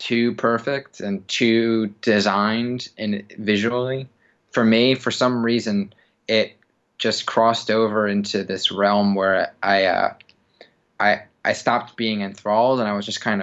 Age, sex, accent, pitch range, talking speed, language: 20-39, male, American, 100-115 Hz, 145 wpm, English